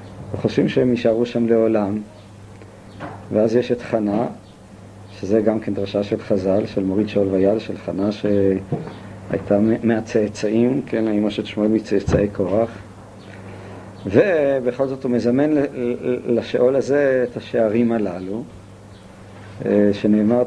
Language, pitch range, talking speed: Hebrew, 105-125 Hz, 115 wpm